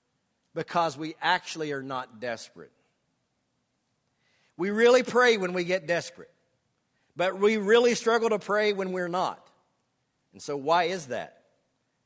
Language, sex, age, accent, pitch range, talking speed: English, male, 50-69, American, 140-195 Hz, 135 wpm